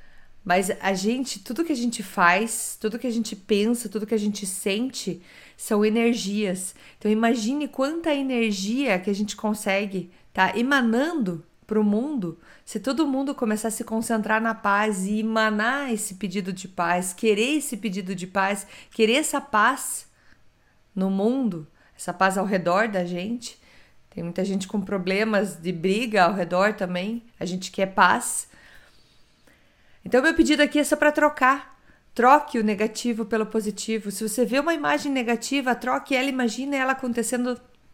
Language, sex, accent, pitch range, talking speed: Portuguese, female, Brazilian, 200-245 Hz, 165 wpm